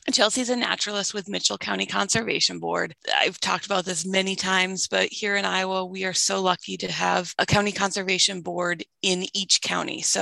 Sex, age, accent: female, 20-39, American